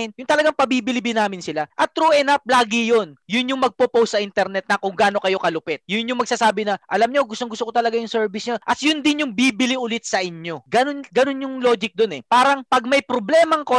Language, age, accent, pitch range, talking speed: Filipino, 20-39, native, 200-255 Hz, 220 wpm